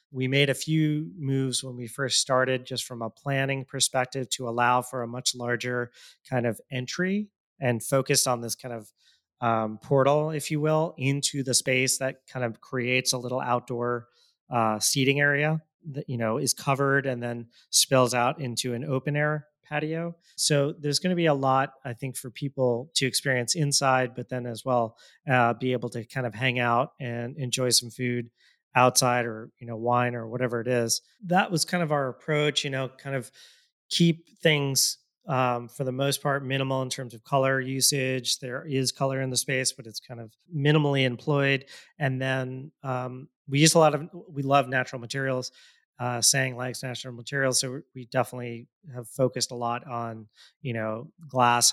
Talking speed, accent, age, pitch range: 190 wpm, American, 30-49, 120-140 Hz